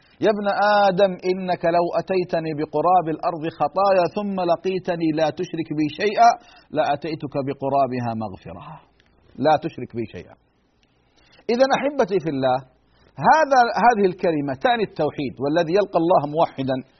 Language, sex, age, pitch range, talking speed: Arabic, male, 50-69, 145-200 Hz, 125 wpm